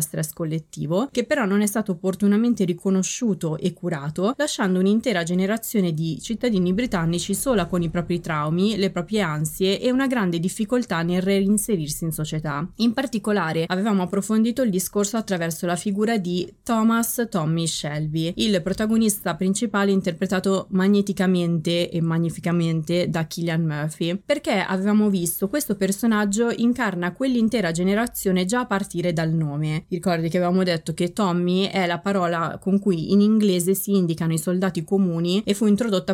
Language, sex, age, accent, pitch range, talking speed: Italian, female, 20-39, native, 165-205 Hz, 150 wpm